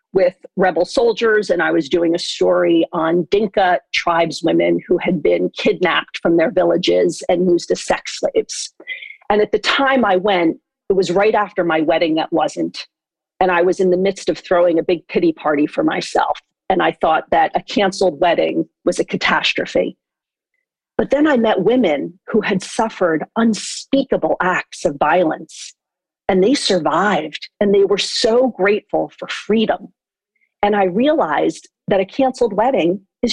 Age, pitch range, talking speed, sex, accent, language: 40-59, 180-250 Hz, 165 wpm, female, American, English